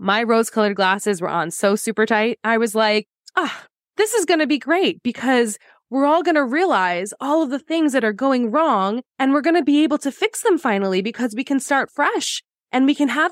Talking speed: 240 wpm